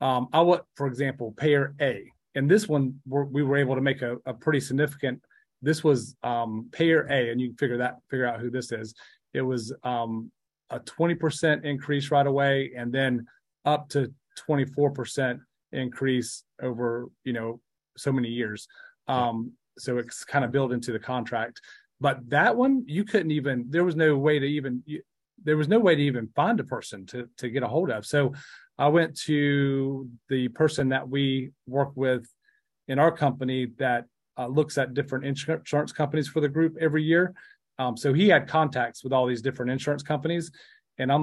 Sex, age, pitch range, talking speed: male, 30-49, 125-150 Hz, 190 wpm